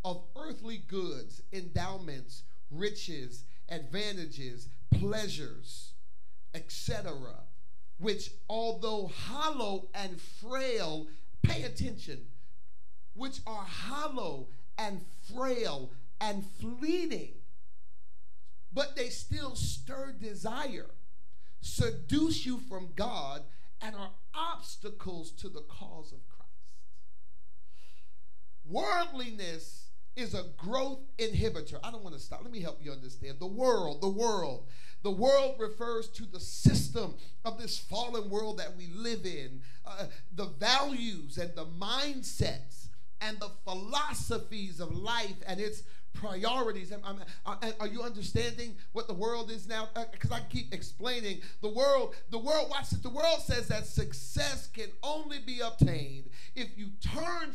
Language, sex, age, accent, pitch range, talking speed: English, male, 50-69, American, 150-235 Hz, 120 wpm